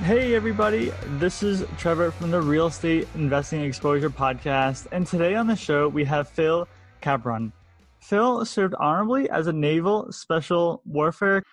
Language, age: English, 20-39